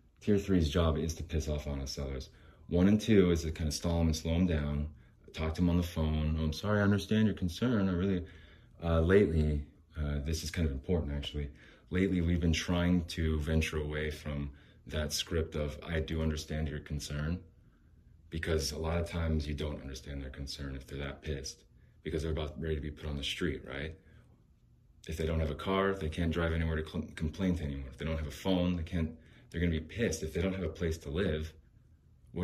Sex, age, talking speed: male, 30-49, 225 wpm